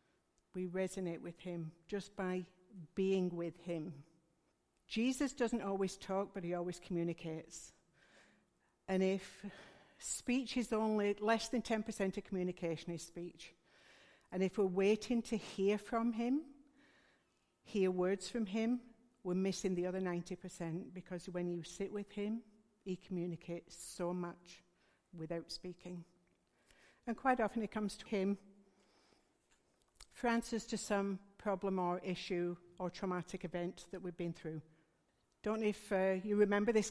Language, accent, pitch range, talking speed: English, British, 175-215 Hz, 135 wpm